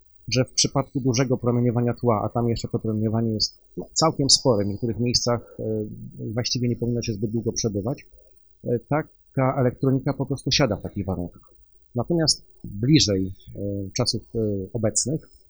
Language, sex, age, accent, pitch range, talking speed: Polish, male, 40-59, native, 105-130 Hz, 140 wpm